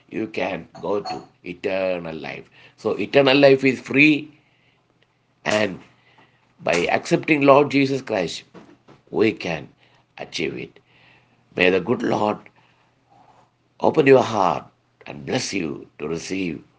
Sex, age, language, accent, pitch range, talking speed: male, 60-79, English, Indian, 100-135 Hz, 120 wpm